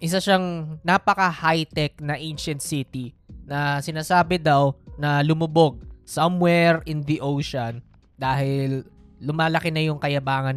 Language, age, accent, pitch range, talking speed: Filipino, 20-39, native, 130-185 Hz, 115 wpm